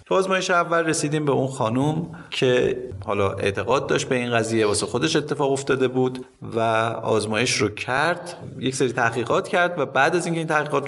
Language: Persian